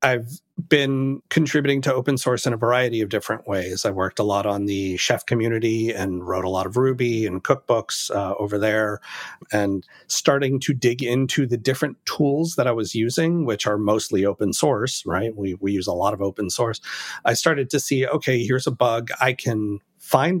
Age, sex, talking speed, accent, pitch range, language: 40-59, male, 200 wpm, American, 100-135 Hz, English